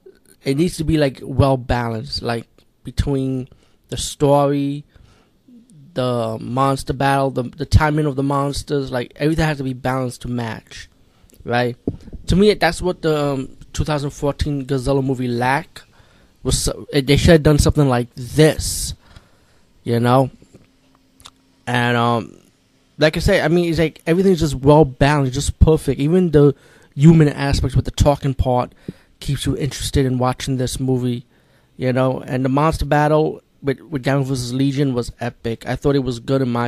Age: 20-39